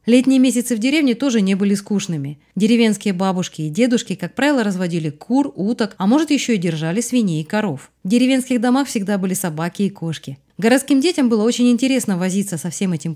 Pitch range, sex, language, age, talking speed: 180-245 Hz, female, Russian, 20-39, 190 wpm